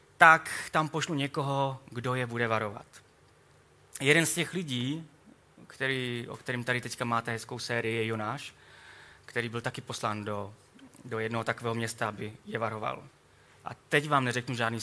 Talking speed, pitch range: 160 wpm, 120-150 Hz